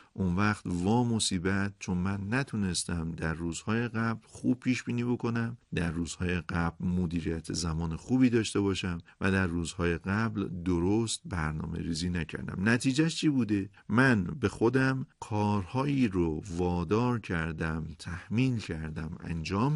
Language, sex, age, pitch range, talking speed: Persian, male, 50-69, 85-120 Hz, 130 wpm